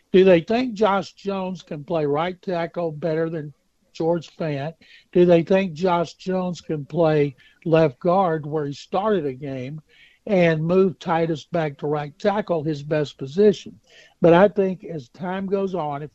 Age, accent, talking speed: 60-79, American, 165 wpm